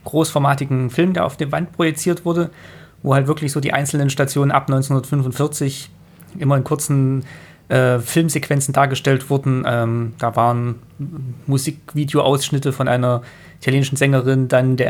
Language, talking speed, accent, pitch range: German, 135 wpm, German, 125-140 Hz